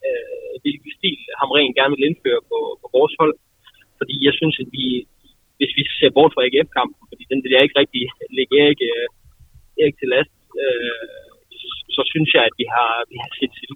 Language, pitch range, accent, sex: Danish, 125-170 Hz, native, male